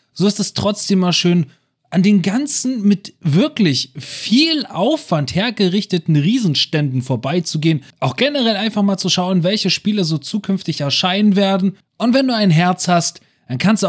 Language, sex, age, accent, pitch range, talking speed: German, male, 30-49, German, 170-230 Hz, 160 wpm